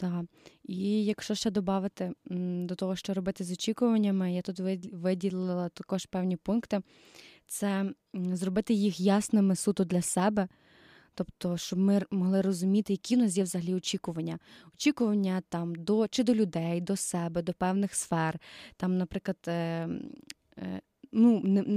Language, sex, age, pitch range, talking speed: Ukrainian, female, 20-39, 185-215 Hz, 135 wpm